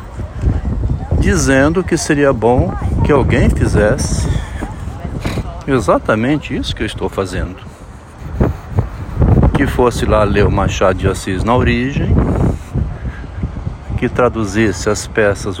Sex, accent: male, Brazilian